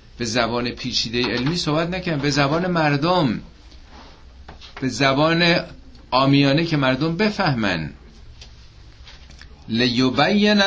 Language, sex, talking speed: Persian, male, 90 wpm